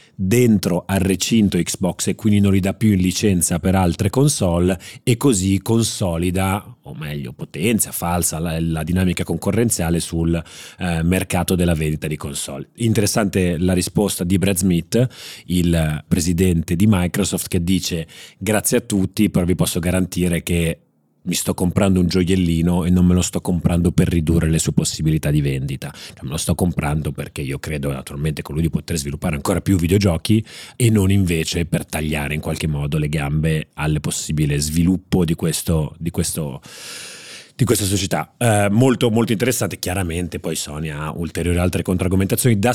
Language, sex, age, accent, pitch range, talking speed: Italian, male, 30-49, native, 80-100 Hz, 165 wpm